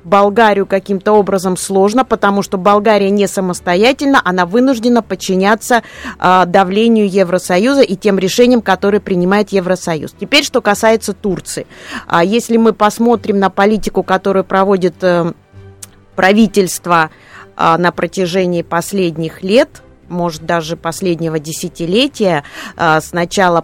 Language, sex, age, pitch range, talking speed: Russian, female, 20-39, 175-215 Hz, 105 wpm